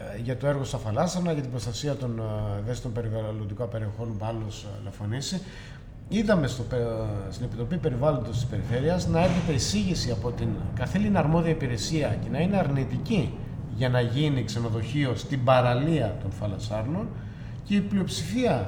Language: Greek